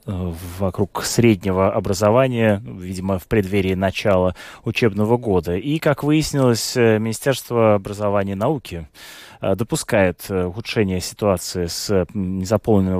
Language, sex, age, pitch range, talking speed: Russian, male, 20-39, 95-110 Hz, 95 wpm